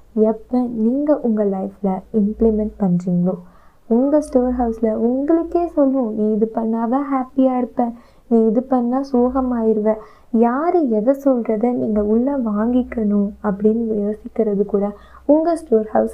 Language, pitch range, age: Tamil, 205-250 Hz, 20-39